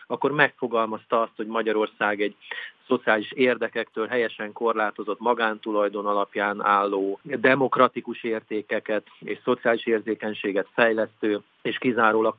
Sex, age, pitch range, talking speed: male, 40-59, 105-120 Hz, 100 wpm